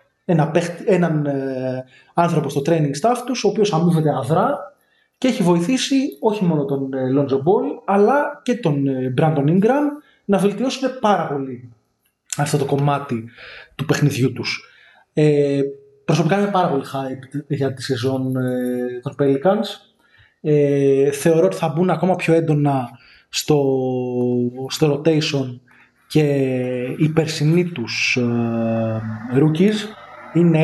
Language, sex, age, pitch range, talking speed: Greek, male, 20-39, 130-165 Hz, 120 wpm